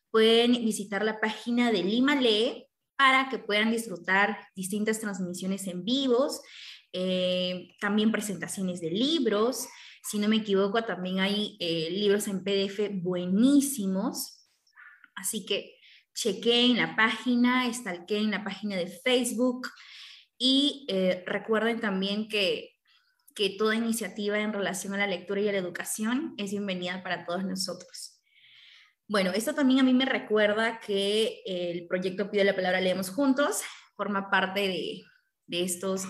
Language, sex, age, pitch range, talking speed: Spanish, female, 20-39, 190-240 Hz, 140 wpm